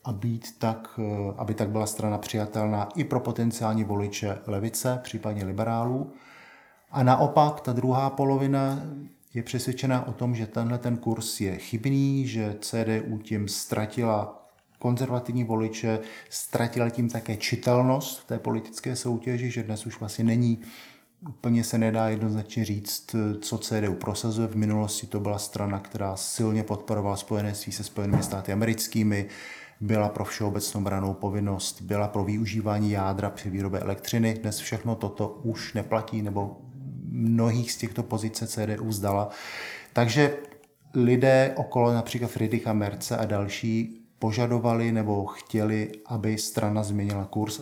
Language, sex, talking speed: Czech, male, 135 wpm